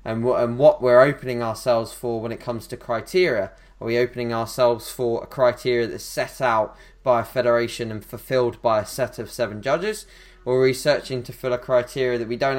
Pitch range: 115-130 Hz